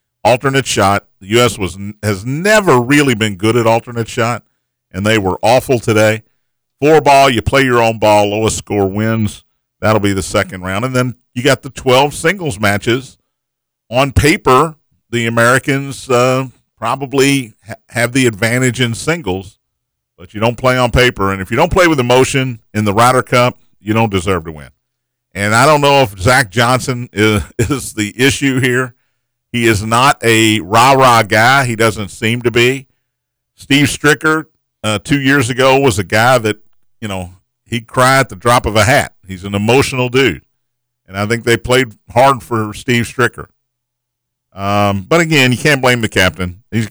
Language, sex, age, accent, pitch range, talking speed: English, male, 50-69, American, 110-130 Hz, 180 wpm